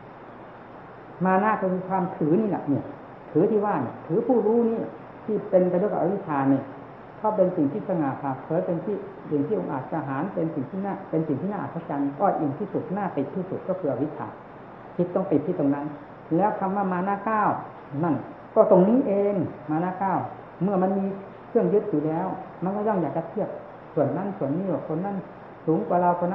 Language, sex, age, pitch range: Thai, female, 60-79, 155-195 Hz